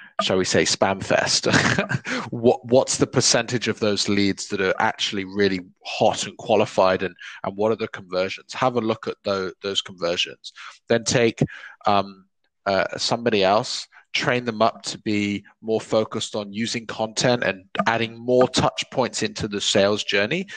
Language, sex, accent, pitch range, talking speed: English, male, British, 100-120 Hz, 165 wpm